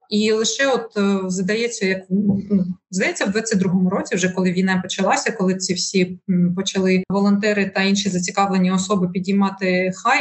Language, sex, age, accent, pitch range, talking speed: Ukrainian, female, 20-39, native, 190-215 Hz, 140 wpm